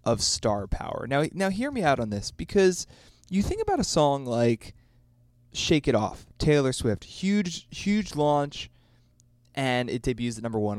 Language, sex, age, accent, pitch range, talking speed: English, male, 20-39, American, 115-150 Hz, 170 wpm